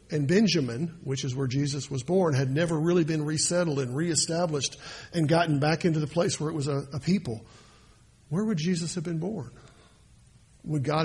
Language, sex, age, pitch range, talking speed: English, male, 50-69, 140-185 Hz, 190 wpm